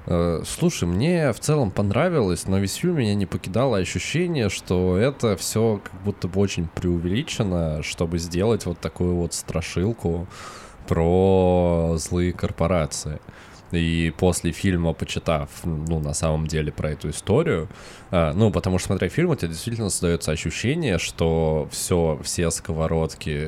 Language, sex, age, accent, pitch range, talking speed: Russian, male, 20-39, native, 80-95 Hz, 140 wpm